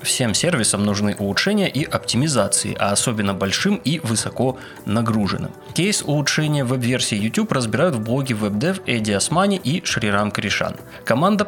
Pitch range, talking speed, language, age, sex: 105-160 Hz, 135 wpm, Russian, 20-39, male